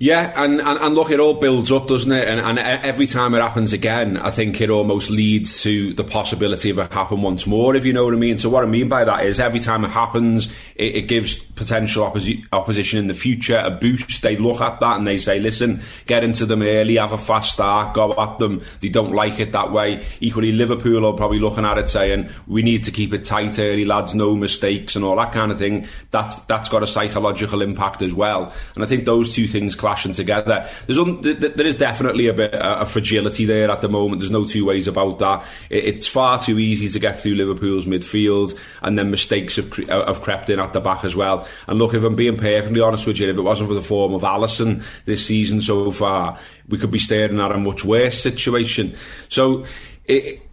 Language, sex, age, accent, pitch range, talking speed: English, male, 20-39, British, 100-115 Hz, 235 wpm